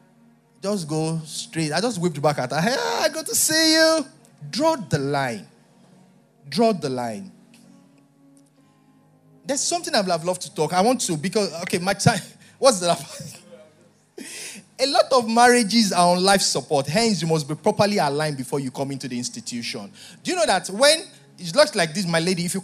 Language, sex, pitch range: English, male, 145-215 Hz